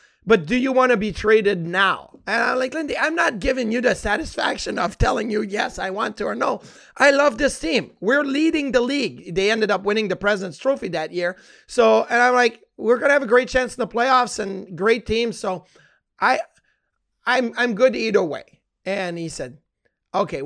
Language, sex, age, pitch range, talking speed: English, male, 30-49, 185-235 Hz, 210 wpm